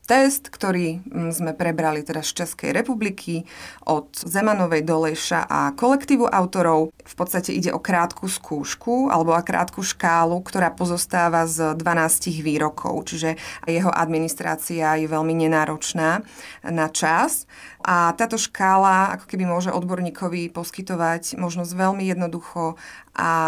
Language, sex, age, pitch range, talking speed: Slovak, female, 30-49, 165-195 Hz, 125 wpm